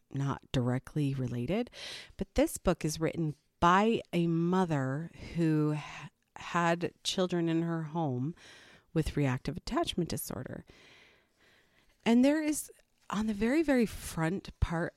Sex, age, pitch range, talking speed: female, 40-59, 145-190 Hz, 120 wpm